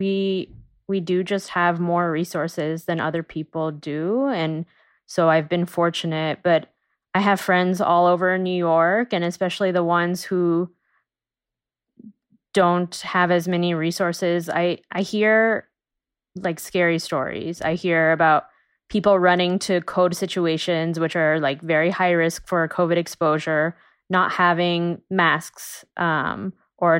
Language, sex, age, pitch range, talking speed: English, female, 20-39, 160-185 Hz, 140 wpm